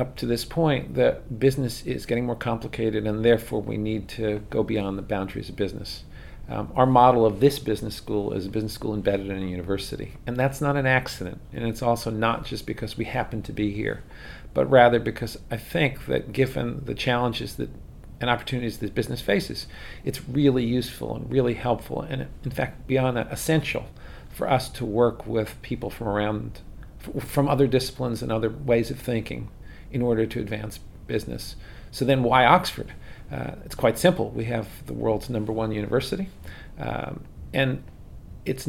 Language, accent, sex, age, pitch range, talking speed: English, American, male, 50-69, 110-130 Hz, 185 wpm